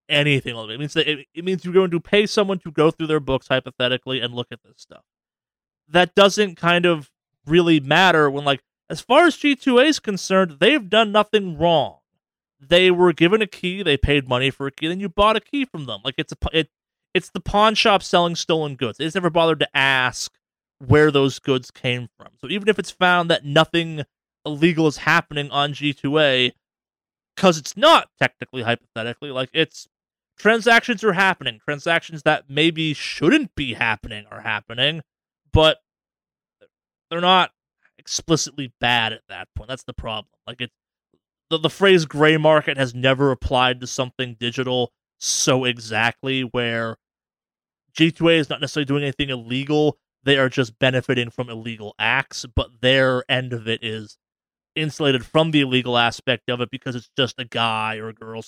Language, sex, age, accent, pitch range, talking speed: English, male, 30-49, American, 125-170 Hz, 180 wpm